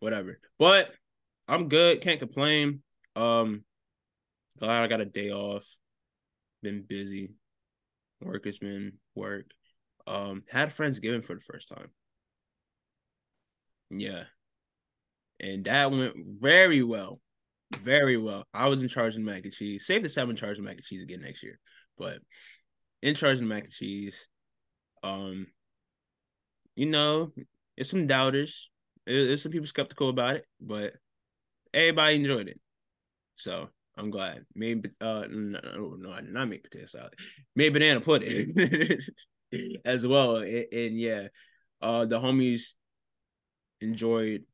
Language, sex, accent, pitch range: English, male, American, 100-130 Hz